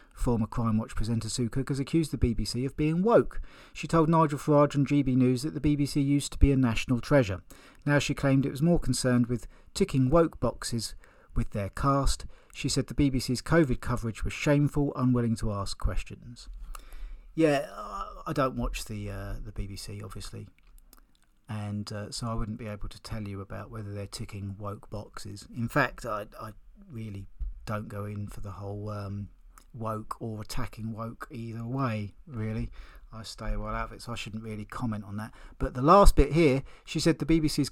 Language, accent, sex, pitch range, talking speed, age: English, British, male, 105-135 Hz, 190 wpm, 40-59